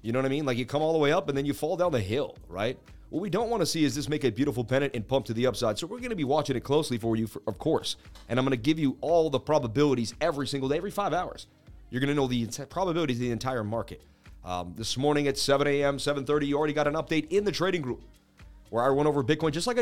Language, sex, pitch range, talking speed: English, male, 135-170 Hz, 300 wpm